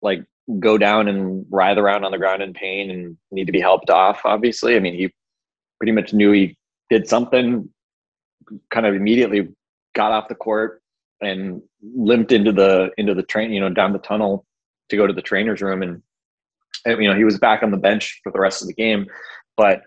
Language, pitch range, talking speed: English, 95-110 Hz, 210 wpm